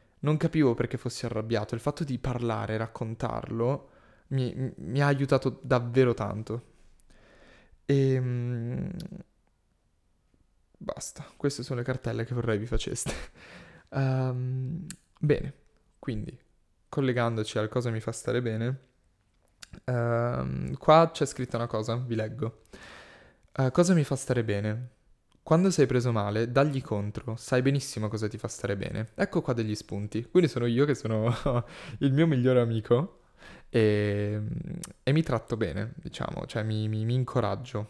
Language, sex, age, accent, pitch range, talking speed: Italian, male, 20-39, native, 110-135 Hz, 140 wpm